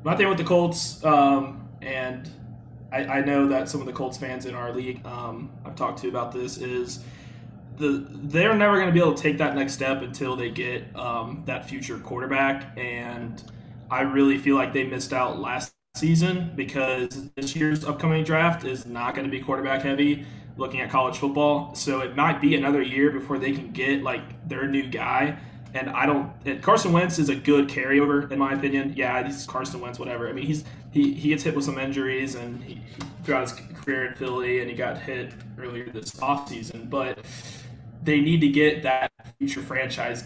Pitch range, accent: 125-145 Hz, American